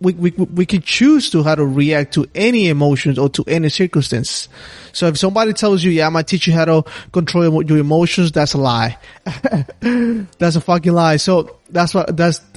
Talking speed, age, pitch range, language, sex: 205 wpm, 20-39, 135-175 Hz, English, male